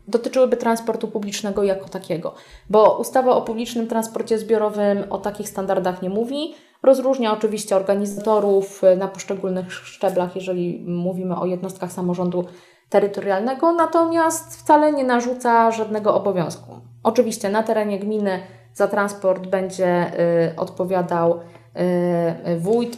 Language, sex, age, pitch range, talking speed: Polish, female, 20-39, 185-220 Hz, 110 wpm